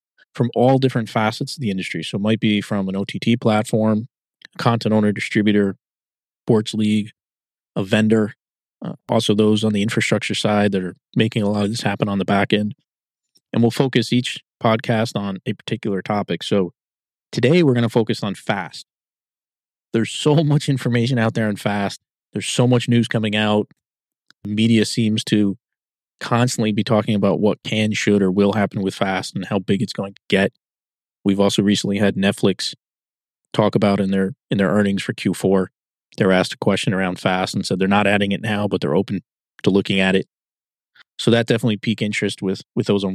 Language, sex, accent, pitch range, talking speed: English, male, American, 100-115 Hz, 190 wpm